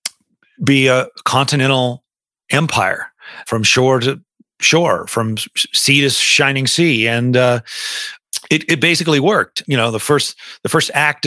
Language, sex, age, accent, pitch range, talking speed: English, male, 40-59, American, 125-155 Hz, 140 wpm